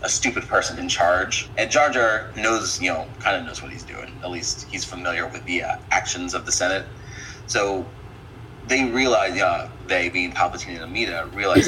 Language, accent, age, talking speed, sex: English, American, 30-49, 185 wpm, male